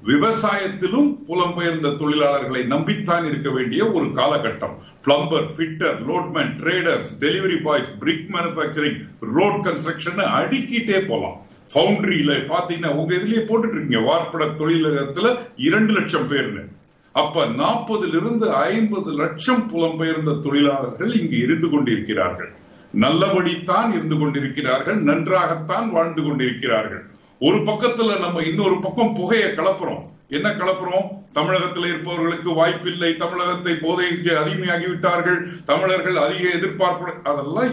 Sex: male